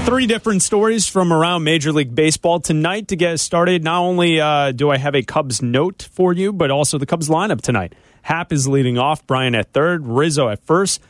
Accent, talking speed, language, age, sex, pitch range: American, 210 wpm, English, 30-49, male, 125-170 Hz